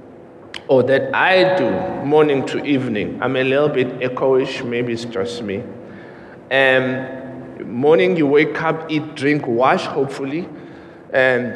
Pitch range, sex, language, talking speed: 140-180 Hz, male, English, 135 wpm